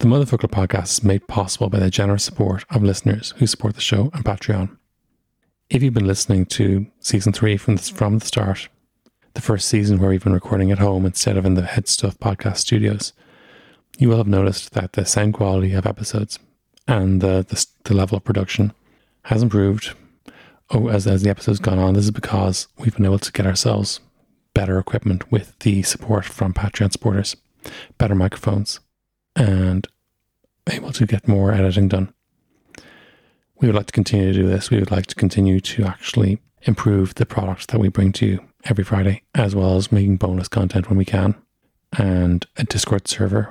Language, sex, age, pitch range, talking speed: English, male, 30-49, 95-110 Hz, 190 wpm